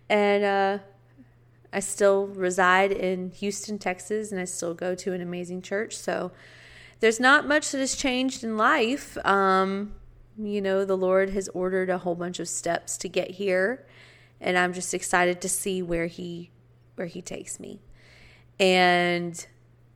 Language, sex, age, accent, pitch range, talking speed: English, female, 30-49, American, 170-195 Hz, 160 wpm